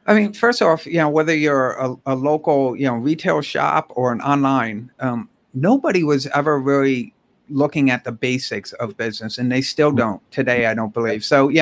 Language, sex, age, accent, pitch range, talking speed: English, male, 50-69, American, 130-160 Hz, 205 wpm